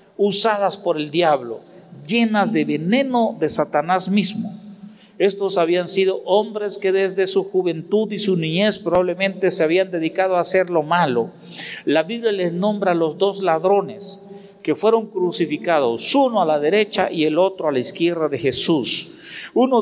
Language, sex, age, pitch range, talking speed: Spanish, male, 50-69, 175-210 Hz, 160 wpm